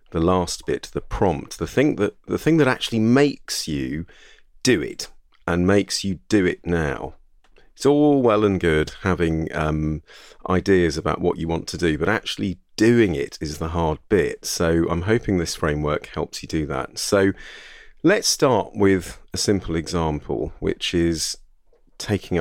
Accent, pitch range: British, 80-95 Hz